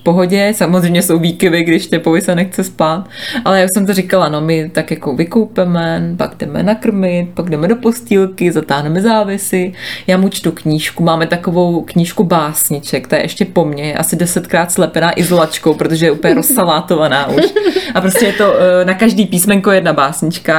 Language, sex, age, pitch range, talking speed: Czech, female, 20-39, 165-190 Hz, 180 wpm